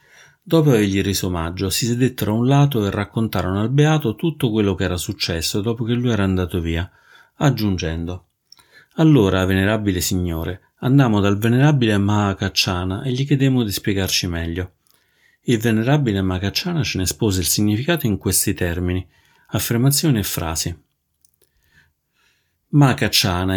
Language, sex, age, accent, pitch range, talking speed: Italian, male, 30-49, native, 90-120 Hz, 135 wpm